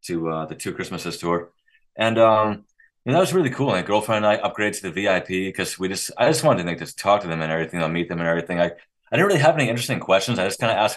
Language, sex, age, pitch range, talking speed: English, male, 30-49, 85-115 Hz, 305 wpm